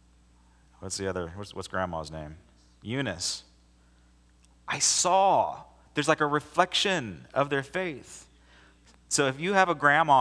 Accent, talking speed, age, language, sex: American, 135 wpm, 30-49, English, male